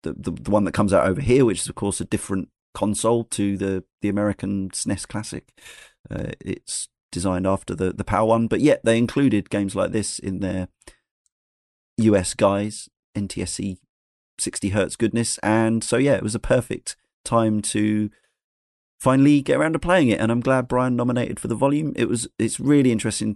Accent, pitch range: British, 100-125 Hz